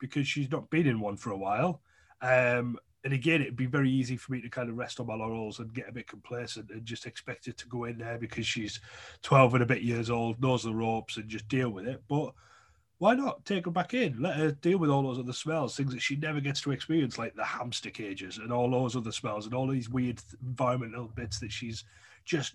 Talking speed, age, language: 250 wpm, 30-49, English